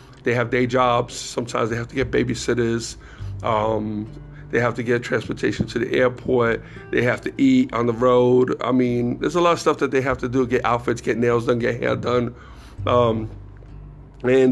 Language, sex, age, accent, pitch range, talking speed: English, male, 50-69, American, 120-145 Hz, 200 wpm